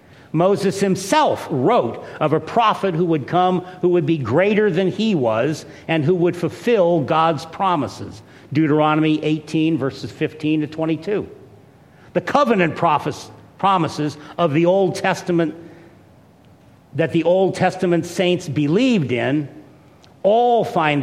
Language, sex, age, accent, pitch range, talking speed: English, male, 50-69, American, 150-190 Hz, 130 wpm